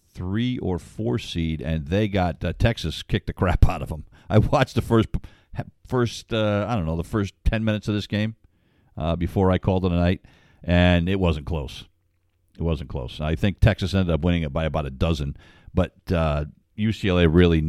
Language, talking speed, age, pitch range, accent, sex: English, 195 wpm, 50-69, 85-115 Hz, American, male